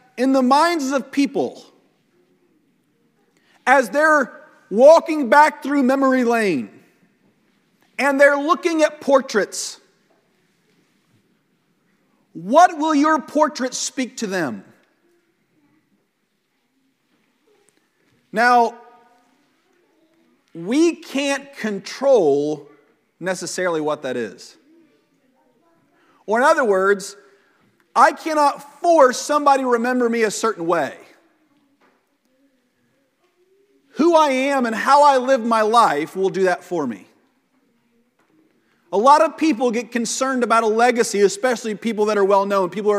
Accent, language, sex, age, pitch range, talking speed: American, English, male, 40-59, 225-310 Hz, 105 wpm